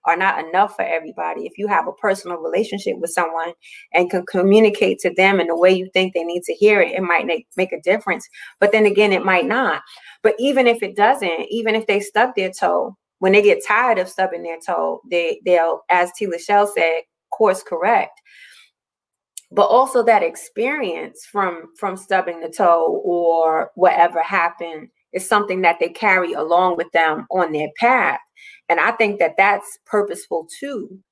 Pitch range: 175-225 Hz